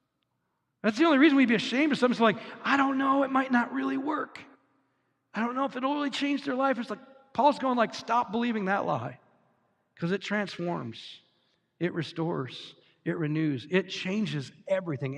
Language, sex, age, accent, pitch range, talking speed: English, male, 50-69, American, 155-225 Hz, 180 wpm